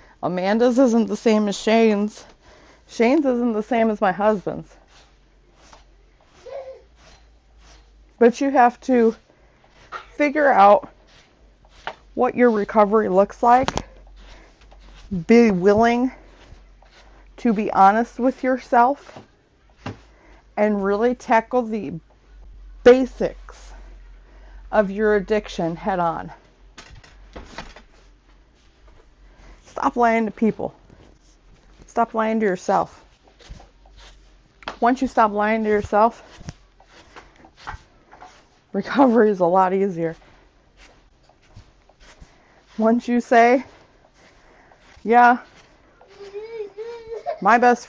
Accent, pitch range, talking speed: American, 200-245 Hz, 85 wpm